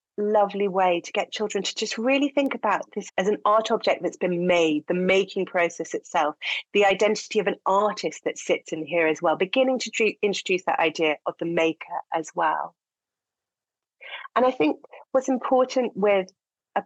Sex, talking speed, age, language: female, 180 wpm, 30-49, English